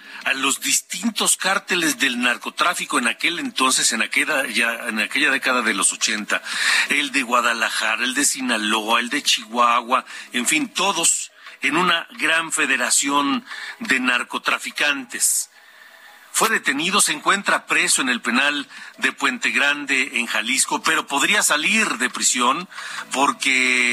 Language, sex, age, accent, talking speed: Spanish, male, 50-69, Mexican, 140 wpm